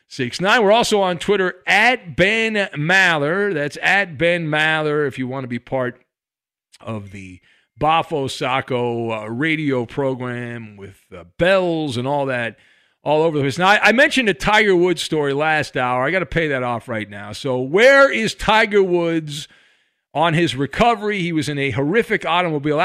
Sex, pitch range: male, 140-190 Hz